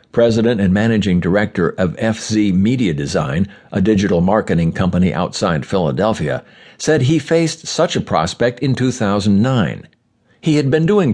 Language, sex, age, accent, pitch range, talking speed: English, male, 60-79, American, 105-140 Hz, 140 wpm